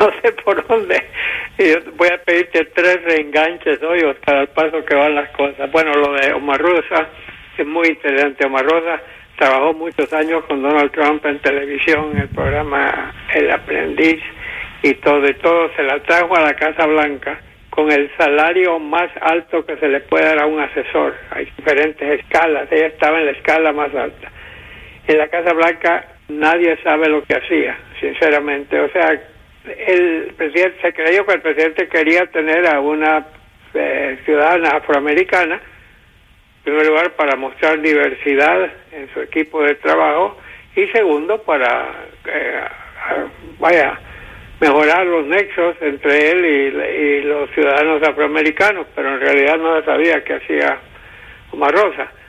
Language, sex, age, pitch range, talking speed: English, male, 60-79, 145-170 Hz, 155 wpm